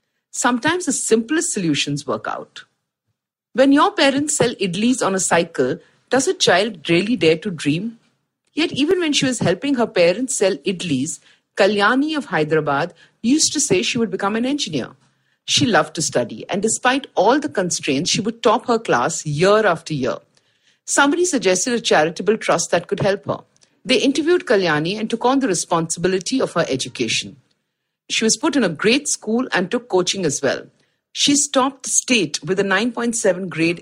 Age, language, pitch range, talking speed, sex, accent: 50-69, English, 170-255 Hz, 175 wpm, female, Indian